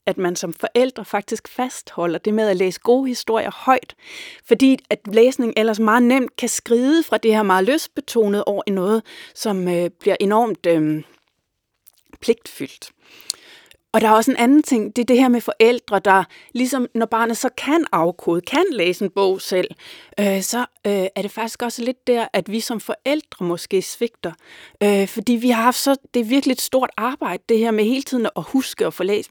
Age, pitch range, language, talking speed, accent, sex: 30-49, 195-250 Hz, Danish, 190 wpm, native, female